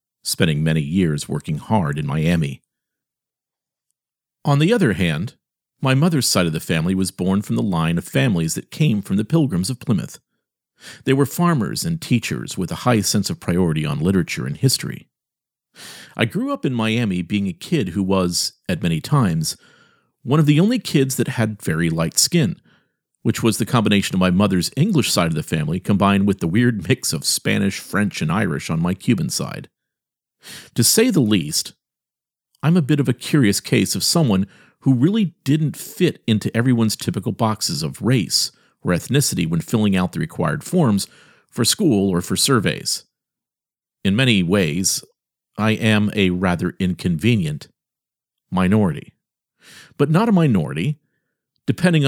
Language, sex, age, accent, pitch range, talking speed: English, male, 50-69, American, 95-150 Hz, 165 wpm